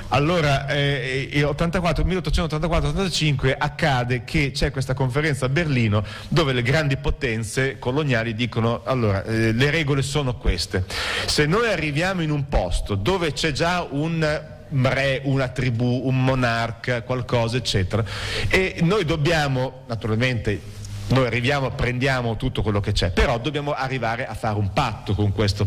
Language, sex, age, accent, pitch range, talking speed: Italian, male, 40-59, native, 105-145 Hz, 145 wpm